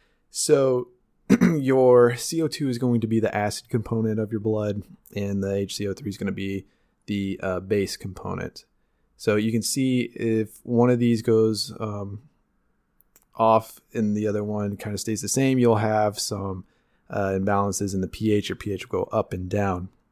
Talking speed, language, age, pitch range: 175 wpm, English, 20-39, 105-120 Hz